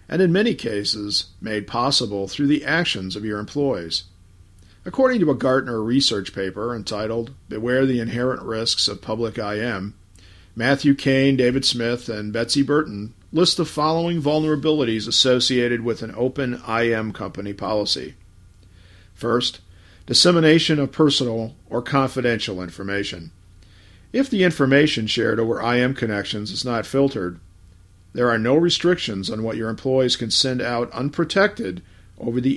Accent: American